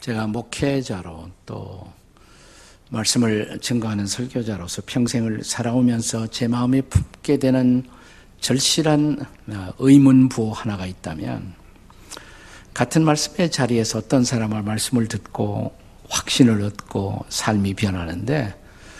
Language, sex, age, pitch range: Korean, male, 50-69, 105-135 Hz